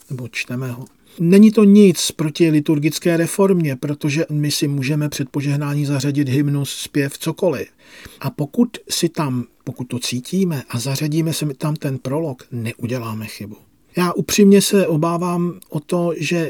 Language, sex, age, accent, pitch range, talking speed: Czech, male, 50-69, native, 135-175 Hz, 145 wpm